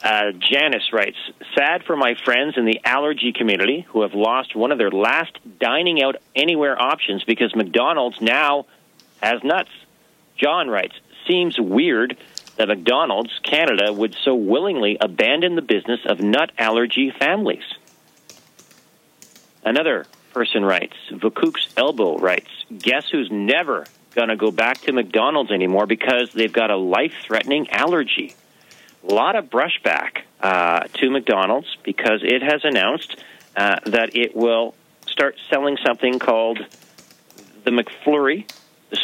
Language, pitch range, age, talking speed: English, 115-135 Hz, 40-59, 130 wpm